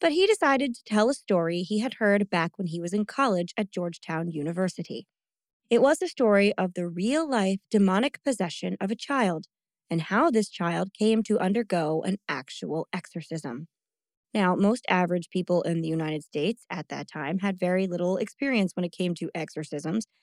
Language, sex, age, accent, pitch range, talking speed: English, female, 20-39, American, 175-225 Hz, 180 wpm